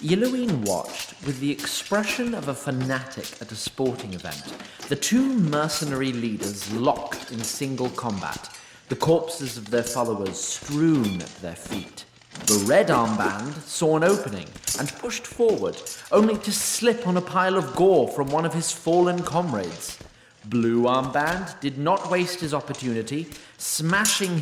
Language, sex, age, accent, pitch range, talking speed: English, male, 30-49, British, 110-165 Hz, 145 wpm